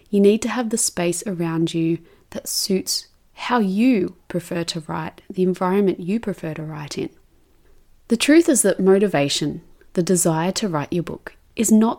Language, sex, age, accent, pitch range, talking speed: English, female, 30-49, Australian, 170-205 Hz, 175 wpm